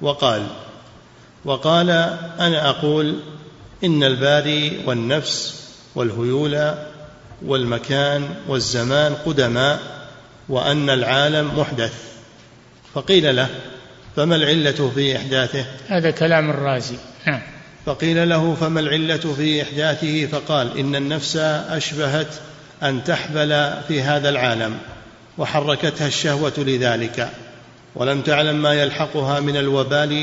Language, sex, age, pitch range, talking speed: Arabic, male, 50-69, 130-150 Hz, 95 wpm